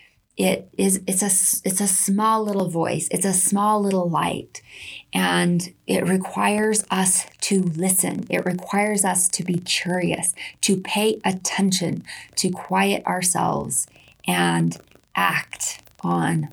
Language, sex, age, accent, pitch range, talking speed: English, female, 20-39, American, 160-190 Hz, 125 wpm